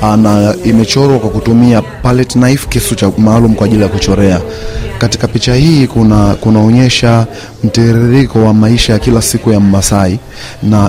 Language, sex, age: Swahili, male, 30-49